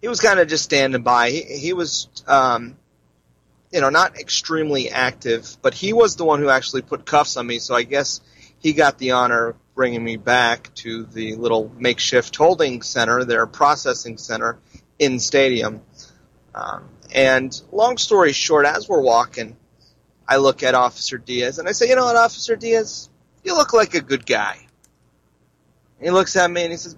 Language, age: English, 30-49